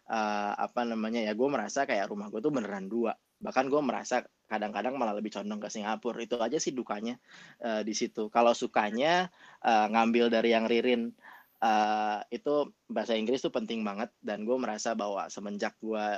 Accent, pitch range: native, 105-120 Hz